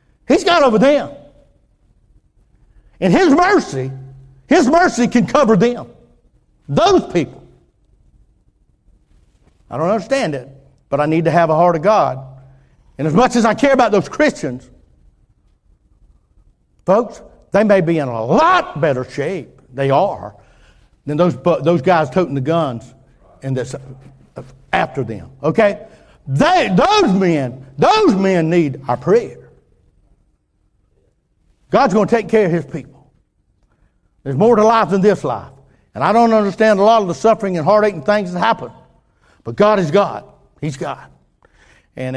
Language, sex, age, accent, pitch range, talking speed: English, male, 50-69, American, 130-215 Hz, 150 wpm